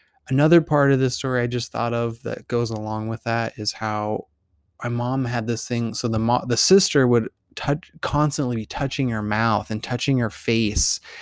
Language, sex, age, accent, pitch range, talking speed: English, male, 20-39, American, 105-125 Hz, 200 wpm